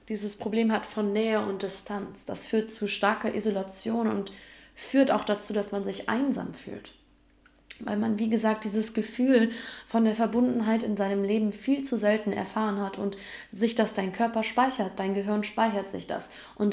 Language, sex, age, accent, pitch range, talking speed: German, female, 20-39, German, 205-230 Hz, 180 wpm